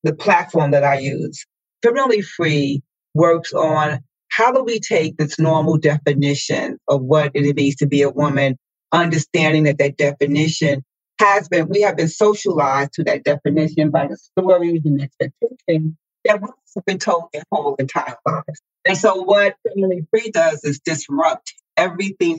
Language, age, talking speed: English, 40-59, 160 wpm